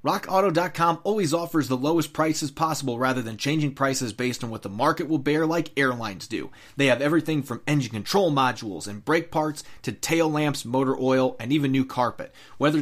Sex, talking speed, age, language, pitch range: male, 190 wpm, 30-49, English, 130-160 Hz